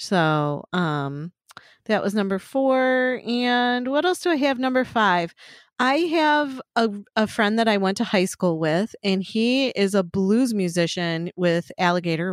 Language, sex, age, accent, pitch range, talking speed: English, female, 30-49, American, 180-230 Hz, 165 wpm